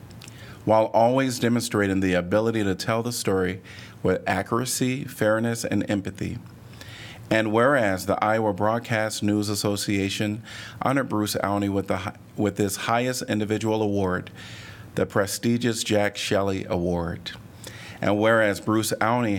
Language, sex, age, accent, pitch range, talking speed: English, male, 40-59, American, 95-115 Hz, 120 wpm